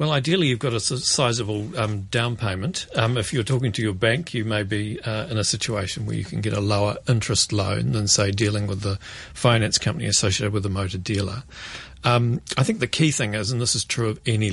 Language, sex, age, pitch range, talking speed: English, male, 40-59, 105-125 Hz, 230 wpm